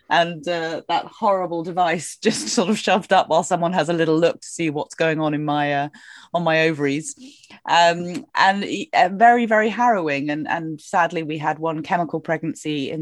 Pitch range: 140-165 Hz